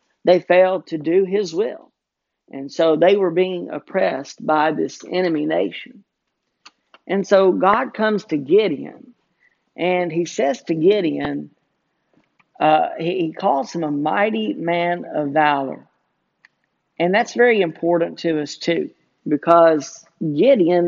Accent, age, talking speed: American, 50-69, 130 wpm